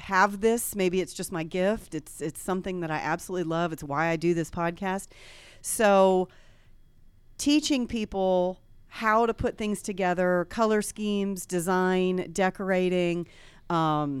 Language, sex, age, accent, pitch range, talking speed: English, female, 40-59, American, 180-235 Hz, 140 wpm